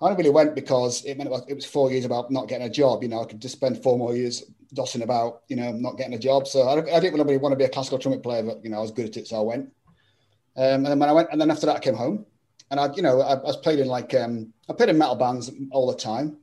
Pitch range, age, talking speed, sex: 115-135 Hz, 30-49, 305 wpm, male